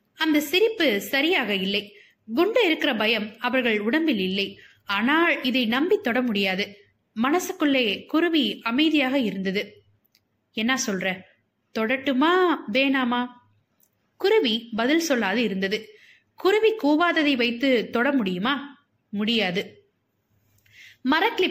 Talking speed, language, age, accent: 90 wpm, Tamil, 20-39, native